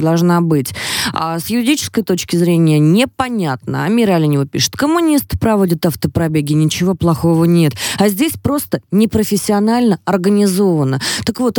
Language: Russian